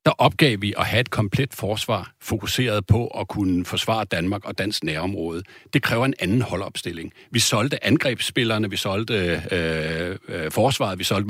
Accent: native